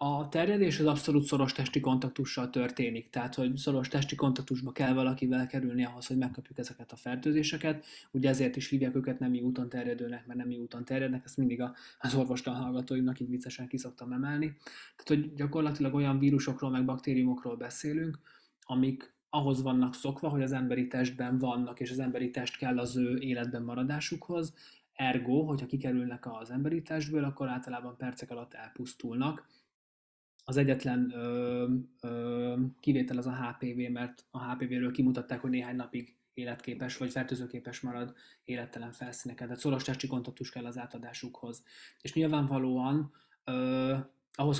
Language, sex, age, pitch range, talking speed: Hungarian, male, 20-39, 125-135 Hz, 155 wpm